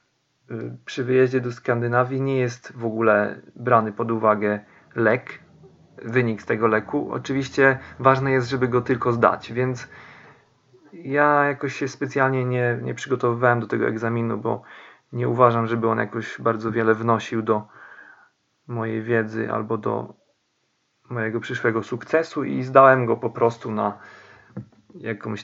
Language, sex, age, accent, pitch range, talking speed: Polish, male, 40-59, native, 115-130 Hz, 135 wpm